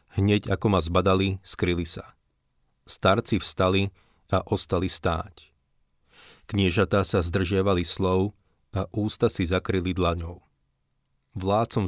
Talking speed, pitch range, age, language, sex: 105 wpm, 85-100 Hz, 40-59, Slovak, male